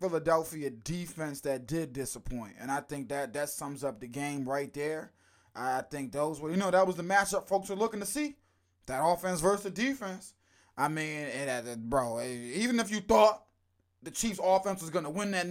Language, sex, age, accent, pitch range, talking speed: English, male, 20-39, American, 135-195 Hz, 200 wpm